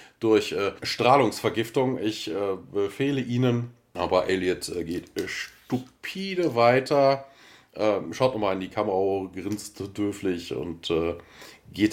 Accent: German